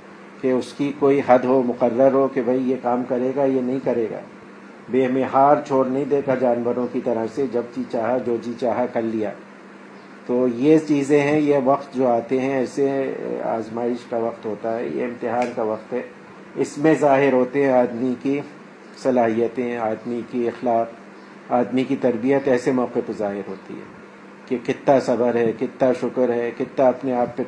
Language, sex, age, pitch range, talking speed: Urdu, male, 50-69, 120-135 Hz, 185 wpm